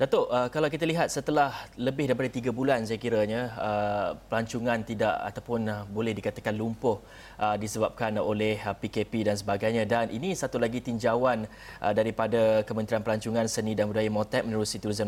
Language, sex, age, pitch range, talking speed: Malay, male, 20-39, 115-145 Hz, 145 wpm